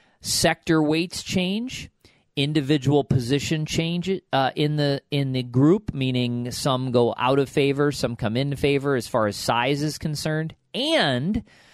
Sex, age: male, 40-59